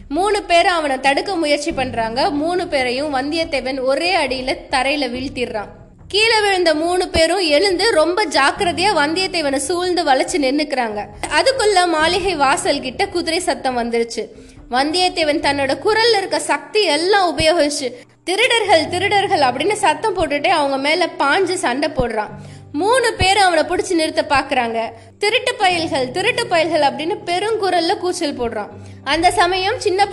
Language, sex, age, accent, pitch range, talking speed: Tamil, female, 20-39, native, 275-365 Hz, 100 wpm